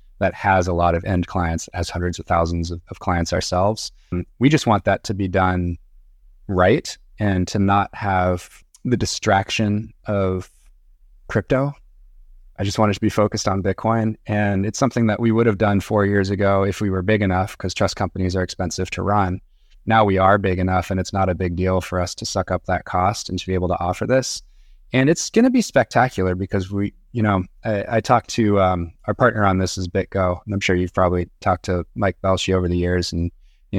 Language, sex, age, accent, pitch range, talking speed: English, male, 20-39, American, 90-105 Hz, 215 wpm